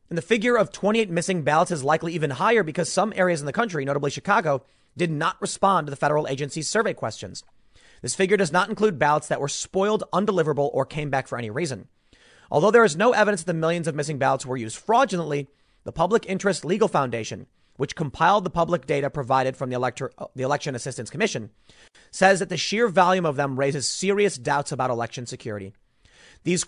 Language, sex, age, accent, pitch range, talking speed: English, male, 30-49, American, 130-180 Hz, 200 wpm